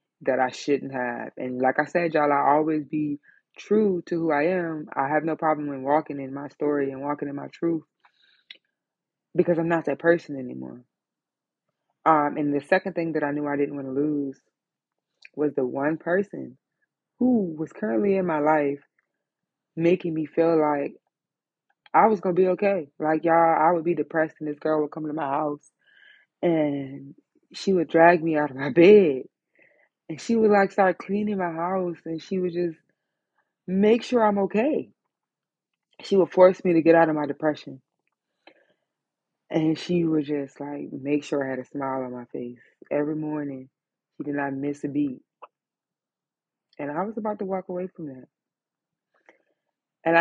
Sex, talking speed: female, 180 wpm